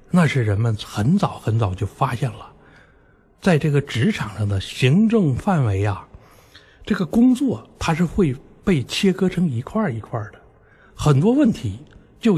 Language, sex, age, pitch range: Chinese, male, 60-79, 105-175 Hz